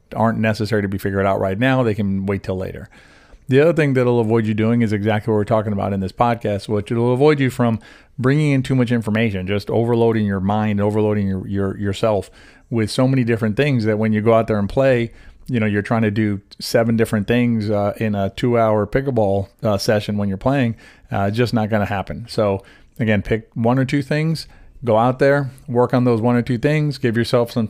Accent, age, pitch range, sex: American, 40-59, 105-130 Hz, male